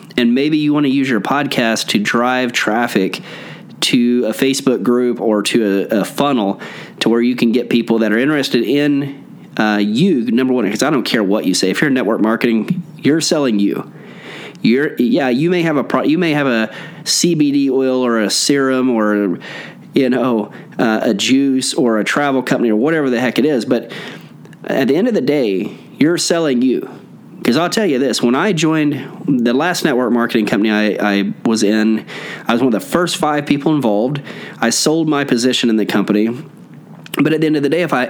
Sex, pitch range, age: male, 115-150 Hz, 30-49